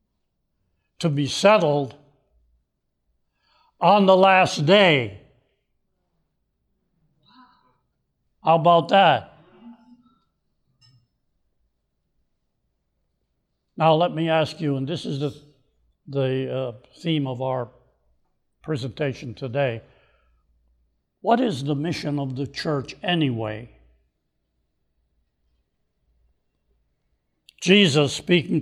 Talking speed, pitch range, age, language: 75 wpm, 130-170 Hz, 70-89, English